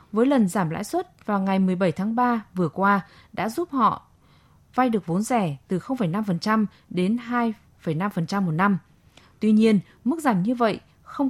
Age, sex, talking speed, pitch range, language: 20-39, female, 170 wpm, 185-245 Hz, Vietnamese